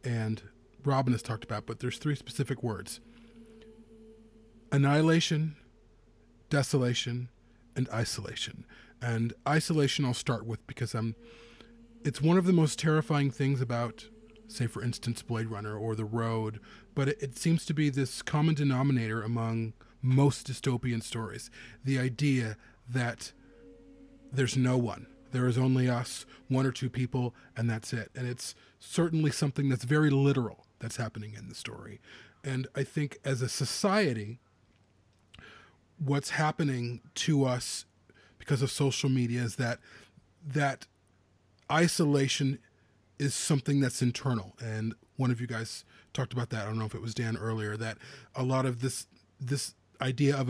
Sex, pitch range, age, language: male, 115-140 Hz, 30-49, English